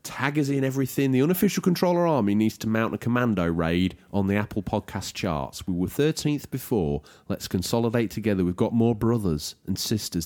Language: English